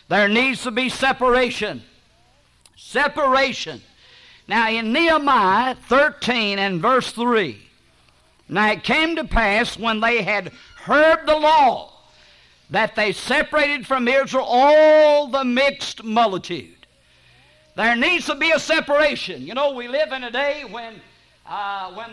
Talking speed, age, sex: 135 wpm, 50-69, male